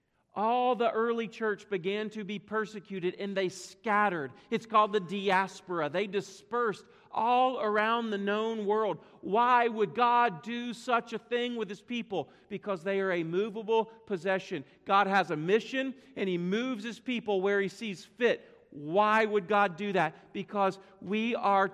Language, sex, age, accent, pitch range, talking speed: English, male, 40-59, American, 180-220 Hz, 165 wpm